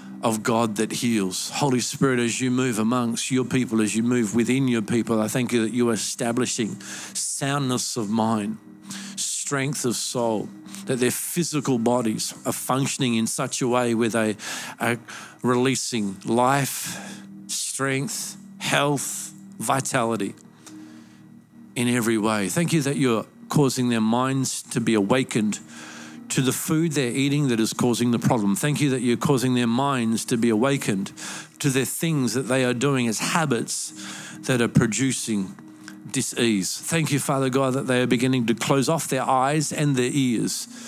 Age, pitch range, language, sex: 50-69, 105-135 Hz, English, male